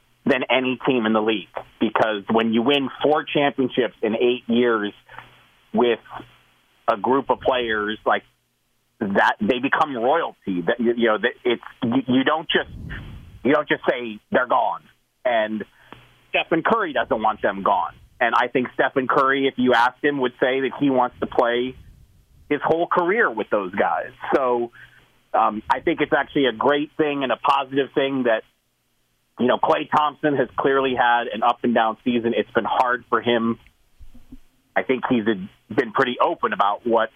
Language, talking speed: English, 160 wpm